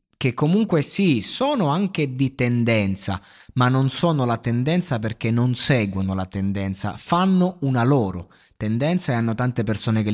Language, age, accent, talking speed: Italian, 20-39, native, 155 wpm